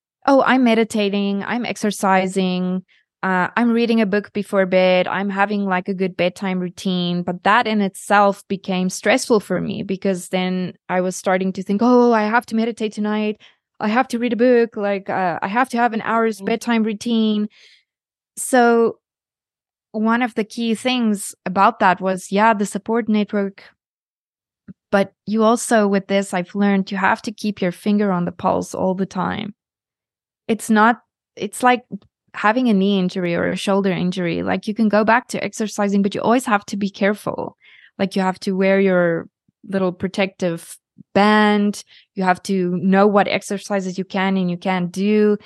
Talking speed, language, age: 180 wpm, English, 20-39